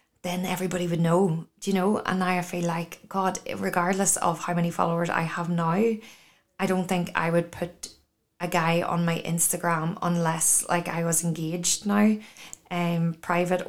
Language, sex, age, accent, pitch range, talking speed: English, female, 20-39, Irish, 170-185 Hz, 175 wpm